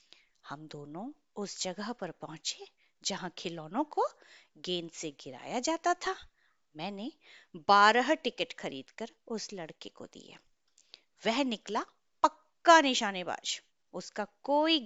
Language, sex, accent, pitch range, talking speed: Hindi, female, native, 180-290 Hz, 115 wpm